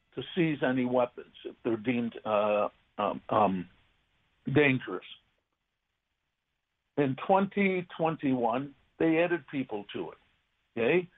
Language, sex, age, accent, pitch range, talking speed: English, male, 60-79, American, 120-165 Hz, 100 wpm